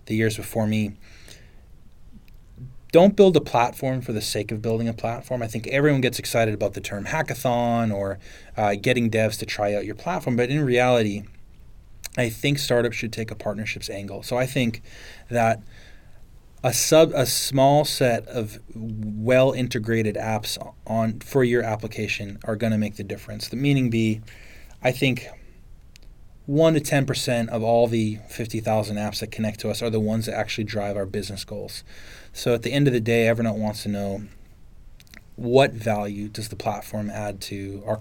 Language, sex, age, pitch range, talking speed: English, male, 20-39, 105-125 Hz, 175 wpm